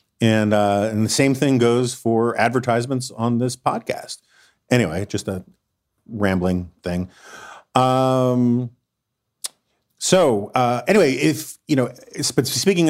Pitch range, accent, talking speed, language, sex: 100-120 Hz, American, 115 wpm, English, male